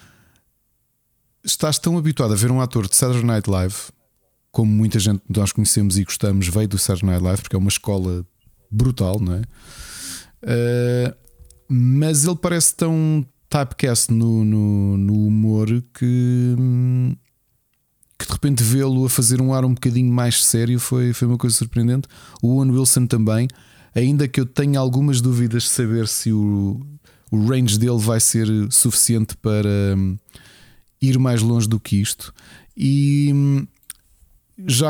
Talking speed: 150 wpm